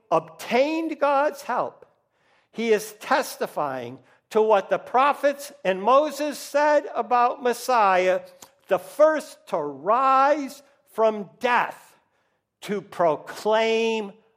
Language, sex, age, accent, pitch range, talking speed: English, male, 60-79, American, 180-250 Hz, 95 wpm